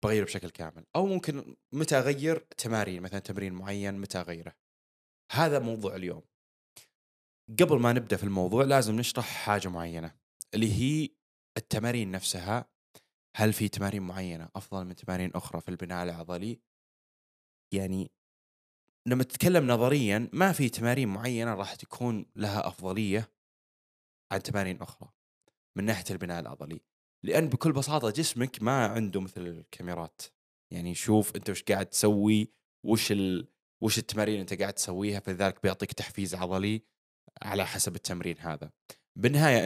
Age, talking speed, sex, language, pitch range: 20-39, 135 wpm, male, Arabic, 90-120 Hz